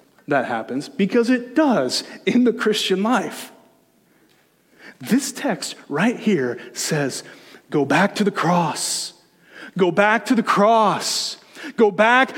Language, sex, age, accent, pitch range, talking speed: English, male, 30-49, American, 215-275 Hz, 125 wpm